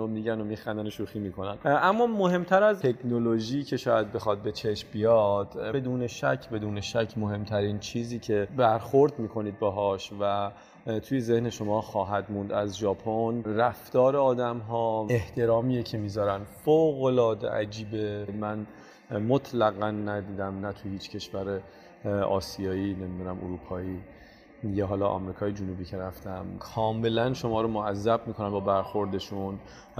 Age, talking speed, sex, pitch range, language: 30-49, 135 wpm, male, 100-115 Hz, Persian